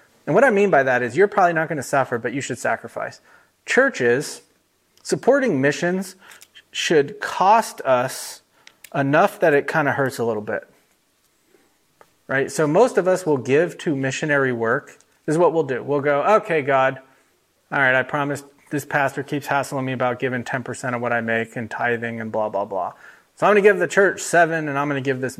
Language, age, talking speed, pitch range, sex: English, 30-49, 205 wpm, 125-150 Hz, male